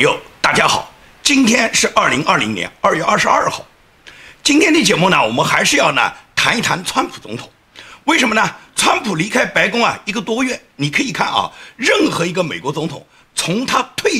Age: 50-69